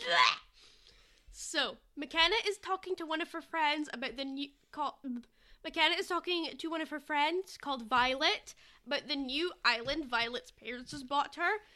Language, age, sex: English, 10-29, female